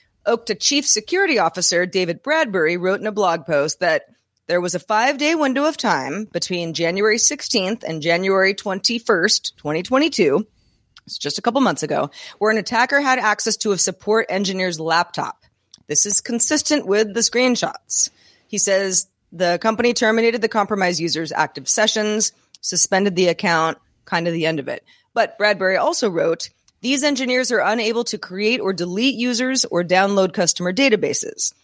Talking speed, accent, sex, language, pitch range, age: 160 wpm, American, female, English, 170-235 Hz, 30-49